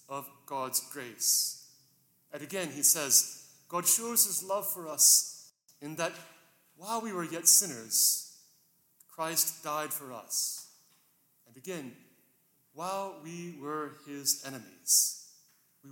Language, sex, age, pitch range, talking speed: English, male, 30-49, 135-170 Hz, 120 wpm